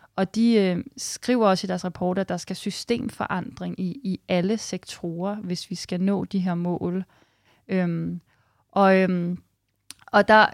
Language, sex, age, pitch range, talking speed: Danish, female, 30-49, 175-210 Hz, 160 wpm